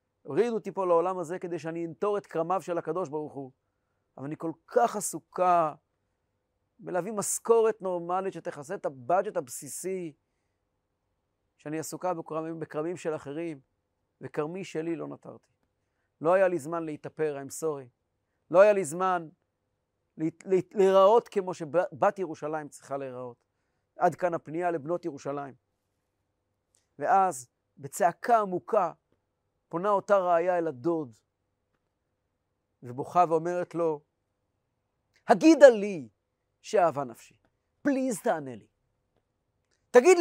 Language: Hebrew